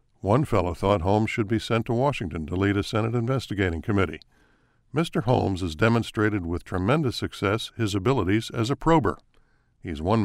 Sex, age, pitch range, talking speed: male, 60-79, 95-115 Hz, 170 wpm